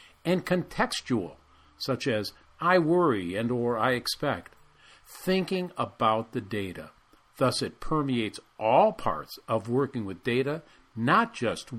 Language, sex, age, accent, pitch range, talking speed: English, male, 50-69, American, 100-155 Hz, 125 wpm